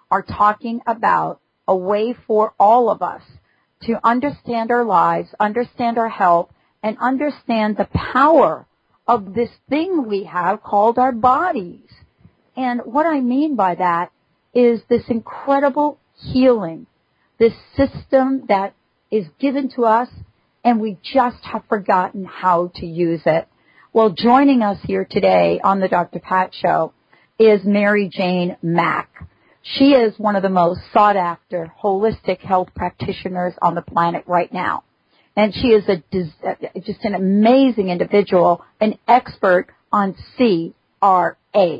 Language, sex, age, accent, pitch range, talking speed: English, female, 40-59, American, 185-240 Hz, 135 wpm